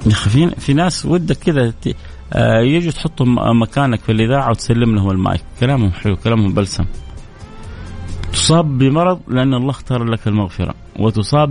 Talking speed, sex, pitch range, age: 130 wpm, male, 100-135 Hz, 30-49